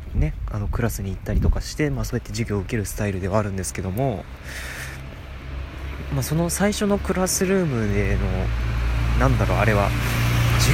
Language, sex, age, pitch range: Japanese, male, 20-39, 95-120 Hz